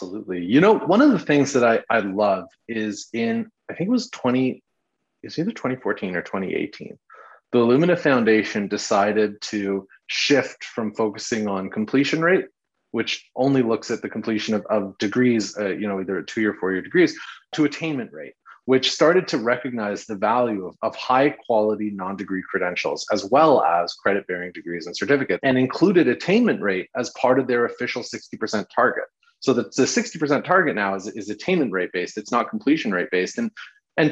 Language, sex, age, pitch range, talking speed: English, male, 30-49, 110-160 Hz, 185 wpm